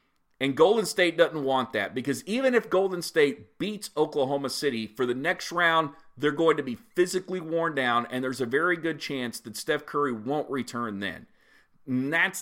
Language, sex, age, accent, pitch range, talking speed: English, male, 40-59, American, 120-160 Hz, 190 wpm